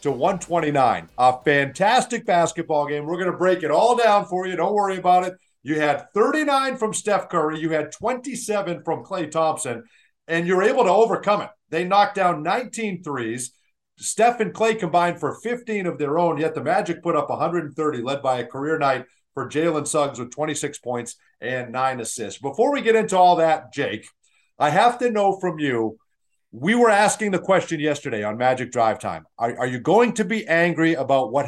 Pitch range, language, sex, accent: 135-190 Hz, English, male, American